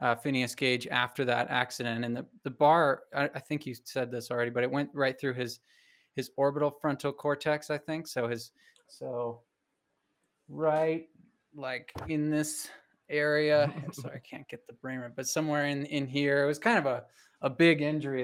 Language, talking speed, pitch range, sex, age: English, 190 wpm, 130-155 Hz, male, 20-39